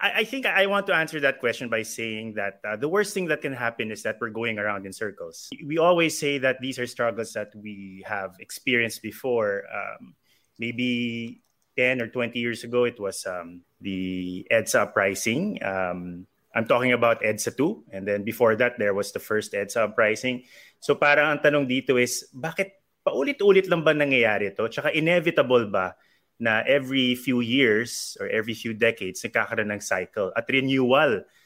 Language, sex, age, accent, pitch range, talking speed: English, male, 30-49, Filipino, 110-150 Hz, 175 wpm